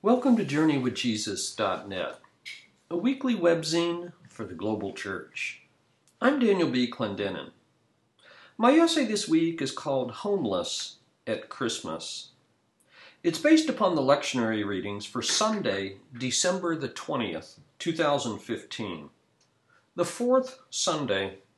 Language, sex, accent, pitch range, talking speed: English, male, American, 120-195 Hz, 105 wpm